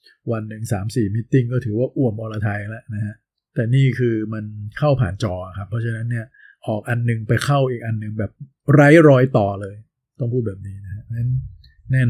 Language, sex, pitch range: Thai, male, 110-135 Hz